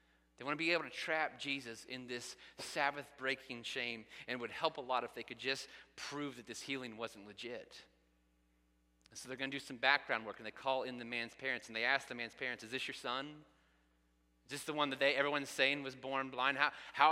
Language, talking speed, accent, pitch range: English, 230 wpm, American, 115-160 Hz